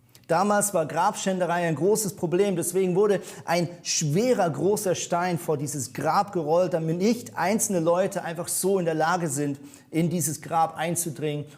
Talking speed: 155 wpm